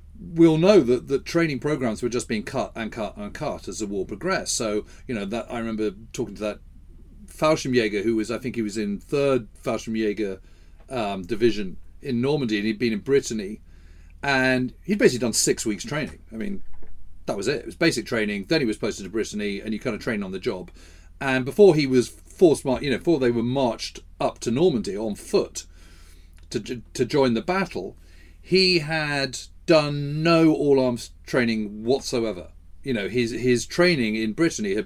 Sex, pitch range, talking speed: male, 90-135 Hz, 195 wpm